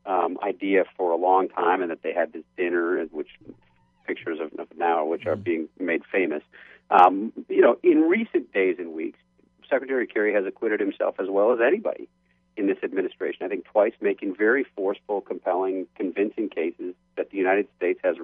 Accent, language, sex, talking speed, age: American, English, male, 185 wpm, 50-69